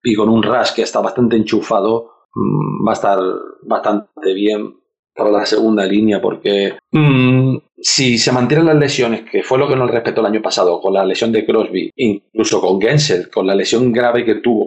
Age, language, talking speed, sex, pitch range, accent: 40-59, Spanish, 190 wpm, male, 120-150 Hz, Spanish